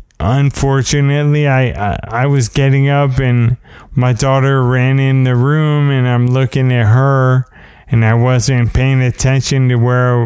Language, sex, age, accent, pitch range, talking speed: English, male, 30-49, American, 115-135 Hz, 150 wpm